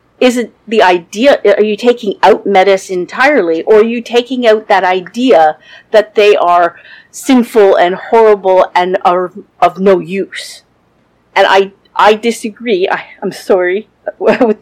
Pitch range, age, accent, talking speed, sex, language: 175-220 Hz, 40-59, American, 150 wpm, female, English